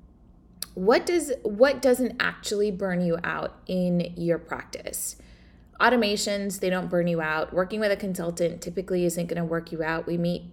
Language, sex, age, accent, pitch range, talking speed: English, female, 20-39, American, 170-215 Hz, 170 wpm